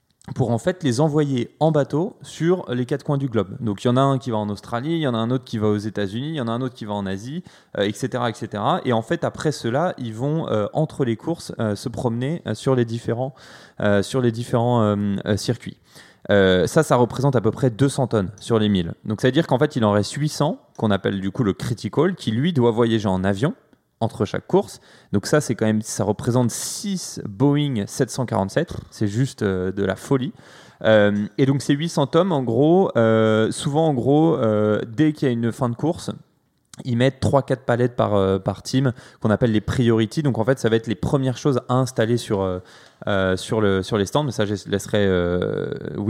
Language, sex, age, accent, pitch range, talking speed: French, male, 20-39, French, 105-135 Hz, 235 wpm